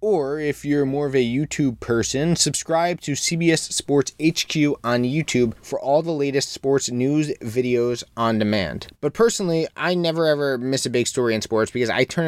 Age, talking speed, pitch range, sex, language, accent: 20-39, 185 wpm, 115-140 Hz, male, English, American